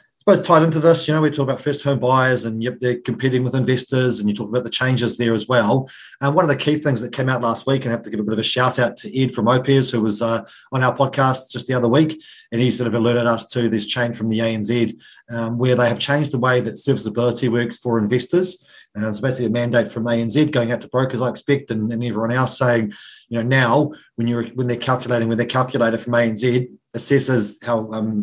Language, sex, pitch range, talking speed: English, male, 115-135 Hz, 260 wpm